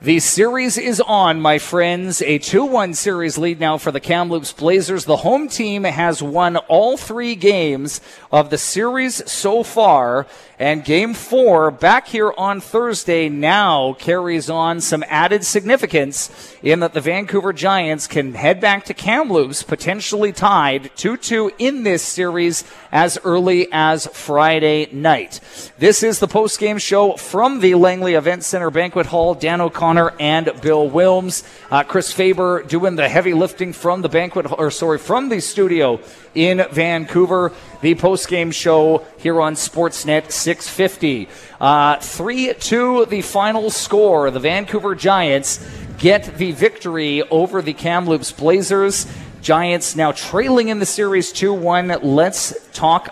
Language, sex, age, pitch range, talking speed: English, male, 40-59, 155-200 Hz, 145 wpm